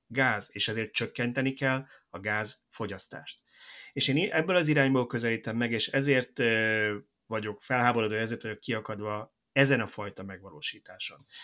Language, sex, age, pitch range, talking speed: Hungarian, male, 30-49, 105-135 Hz, 130 wpm